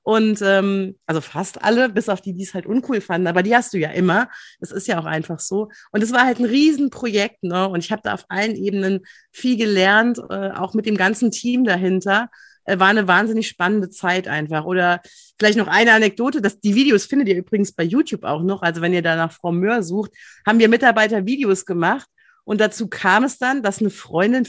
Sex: female